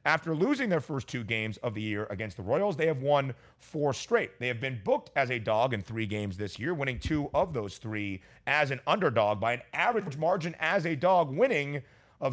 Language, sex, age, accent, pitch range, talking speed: English, male, 30-49, American, 120-160 Hz, 225 wpm